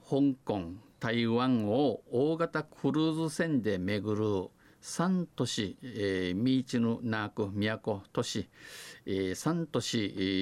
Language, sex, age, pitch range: Japanese, male, 50-69, 105-145 Hz